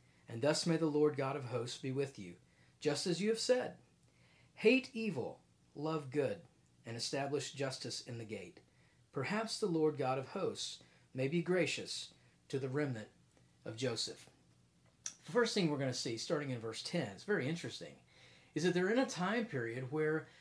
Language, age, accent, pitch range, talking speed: English, 40-59, American, 135-185 Hz, 180 wpm